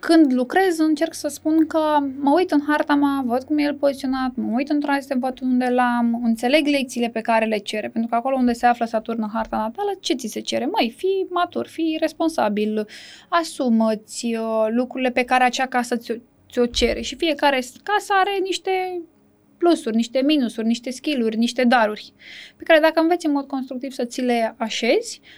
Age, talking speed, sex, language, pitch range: 10-29, 190 wpm, female, Romanian, 240-320 Hz